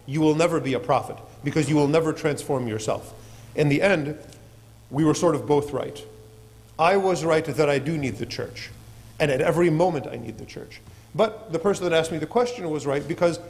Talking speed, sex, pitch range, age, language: 220 wpm, male, 120-165 Hz, 40-59, English